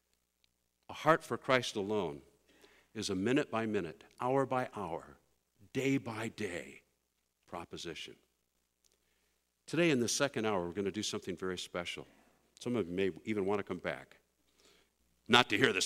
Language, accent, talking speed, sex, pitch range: English, American, 135 wpm, male, 85-120 Hz